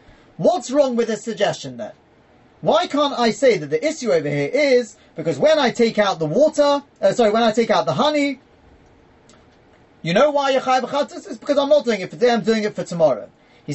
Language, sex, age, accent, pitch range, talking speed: English, male, 30-49, British, 175-250 Hz, 215 wpm